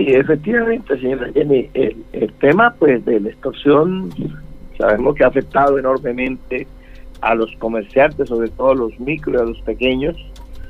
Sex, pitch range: male, 125-145 Hz